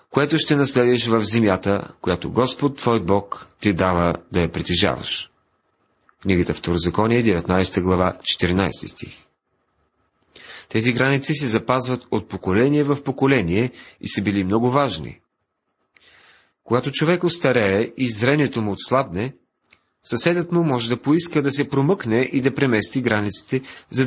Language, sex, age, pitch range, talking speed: Bulgarian, male, 40-59, 105-135 Hz, 130 wpm